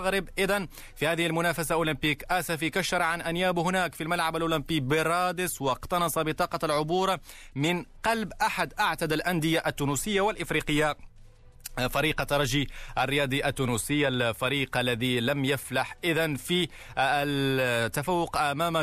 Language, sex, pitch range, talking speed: Arabic, male, 130-165 Hz, 115 wpm